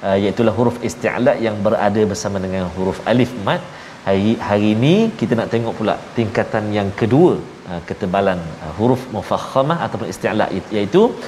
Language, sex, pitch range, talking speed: Malayalam, male, 115-160 Hz, 155 wpm